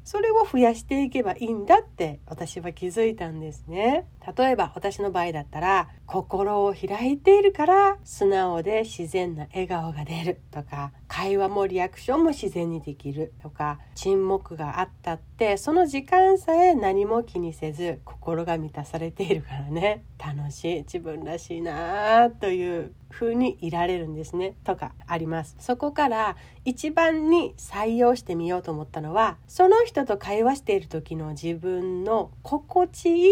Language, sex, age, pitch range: Japanese, female, 40-59, 170-260 Hz